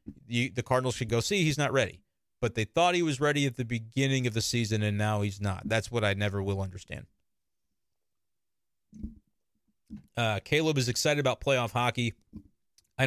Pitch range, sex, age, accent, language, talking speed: 110-160 Hz, male, 30-49, American, English, 175 wpm